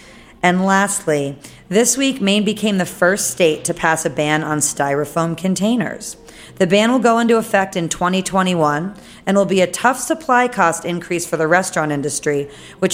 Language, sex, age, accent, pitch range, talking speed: English, female, 40-59, American, 155-195 Hz, 170 wpm